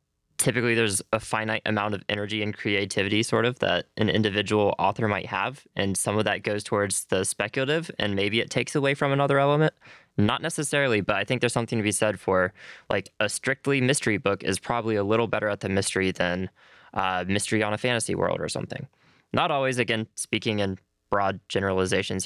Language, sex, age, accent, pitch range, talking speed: English, male, 20-39, American, 100-120 Hz, 195 wpm